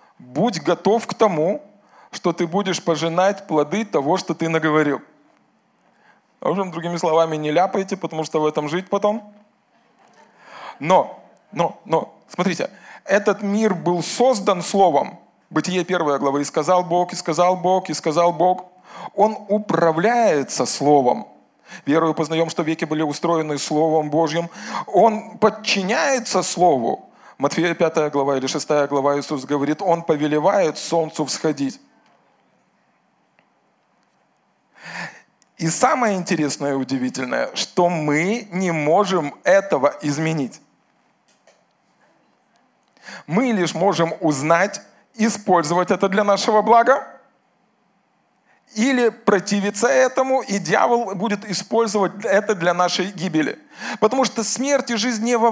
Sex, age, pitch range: male, 20-39, 160-210 Hz